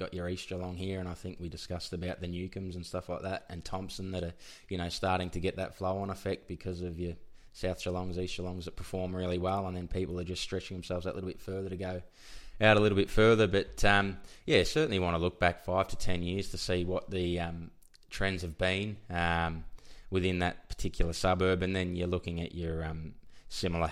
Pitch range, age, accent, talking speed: 85-95 Hz, 20-39, Australian, 230 wpm